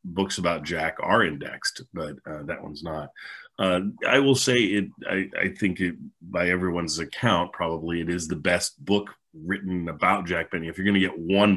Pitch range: 85-100 Hz